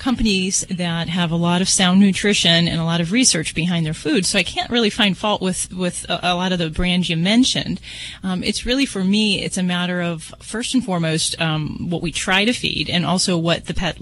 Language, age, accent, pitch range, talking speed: English, 30-49, American, 170-200 Hz, 235 wpm